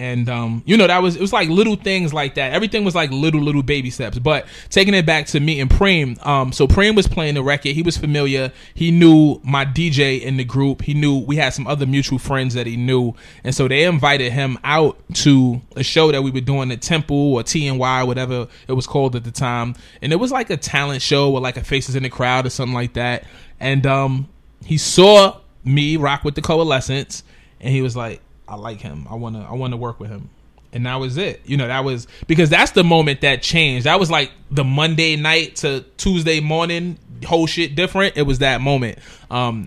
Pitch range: 130-165 Hz